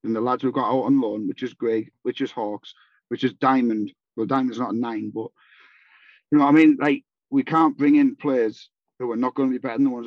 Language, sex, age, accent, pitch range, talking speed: English, male, 40-59, British, 125-150 Hz, 260 wpm